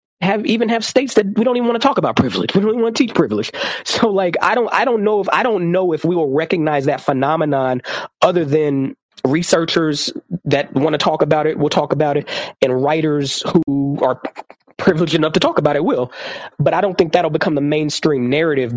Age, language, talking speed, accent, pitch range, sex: 20-39, English, 225 wpm, American, 135-175 Hz, male